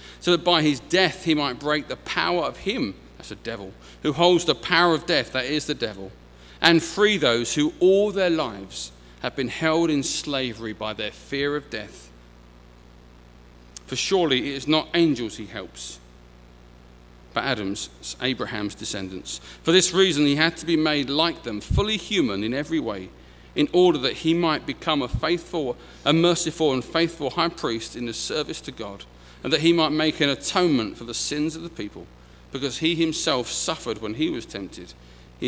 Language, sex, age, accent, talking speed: English, male, 40-59, British, 185 wpm